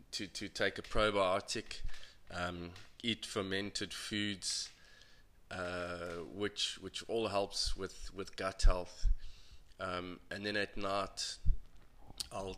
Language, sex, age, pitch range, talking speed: English, male, 20-39, 90-105 Hz, 115 wpm